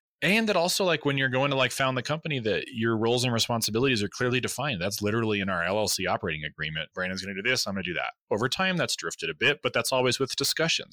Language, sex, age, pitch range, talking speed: English, male, 30-49, 105-140 Hz, 265 wpm